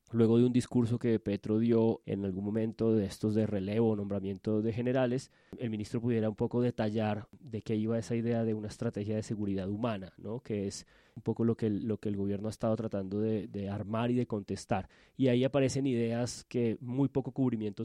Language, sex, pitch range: Spanish, male, 105-125 Hz